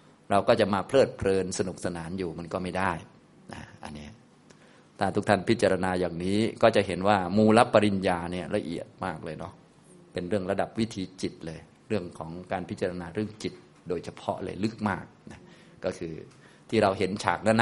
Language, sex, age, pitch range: Thai, male, 30-49, 90-125 Hz